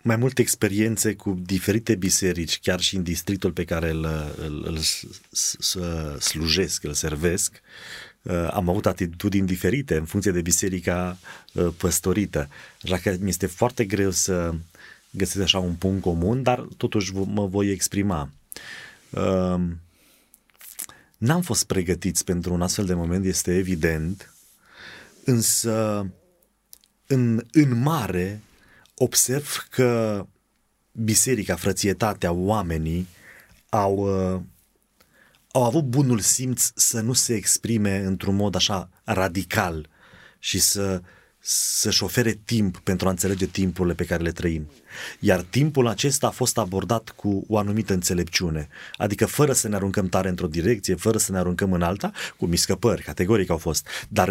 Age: 30-49